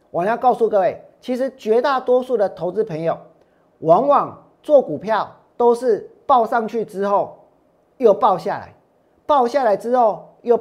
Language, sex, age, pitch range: Chinese, male, 40-59, 195-280 Hz